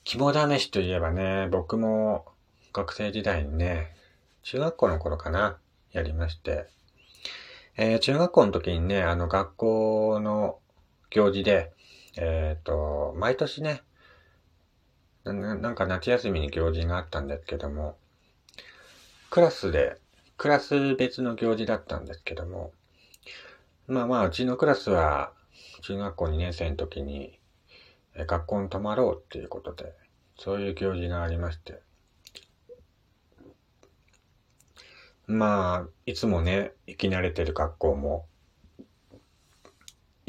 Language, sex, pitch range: Japanese, male, 80-105 Hz